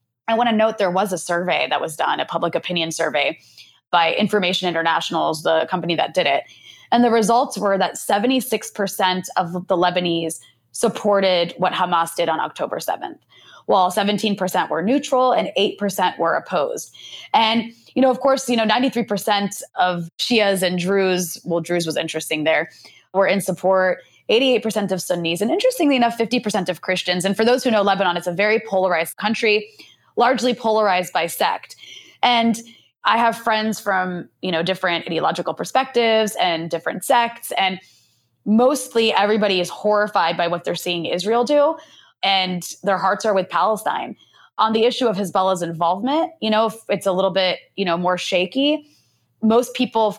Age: 20-39